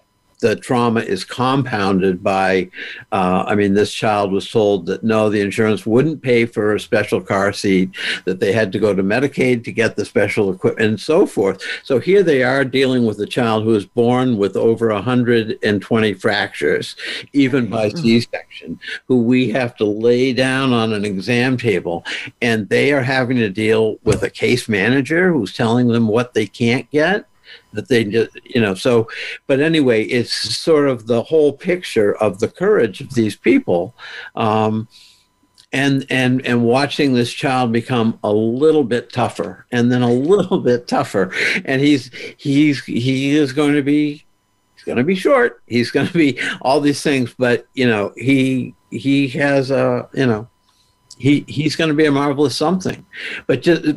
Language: English